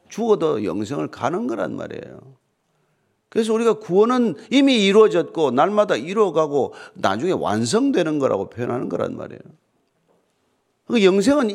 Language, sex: Korean, male